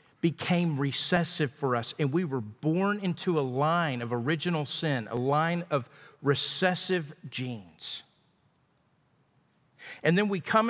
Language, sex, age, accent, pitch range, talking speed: English, male, 50-69, American, 150-210 Hz, 130 wpm